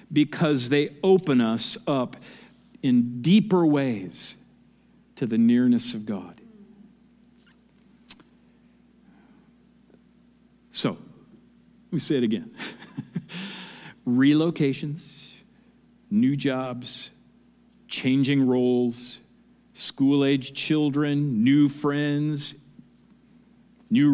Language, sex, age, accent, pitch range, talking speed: English, male, 50-69, American, 135-225 Hz, 70 wpm